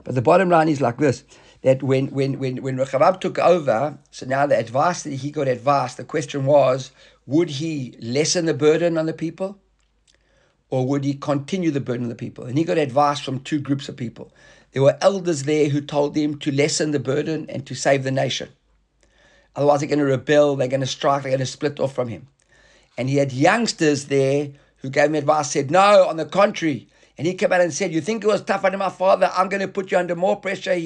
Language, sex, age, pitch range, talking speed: English, male, 50-69, 135-170 Hz, 235 wpm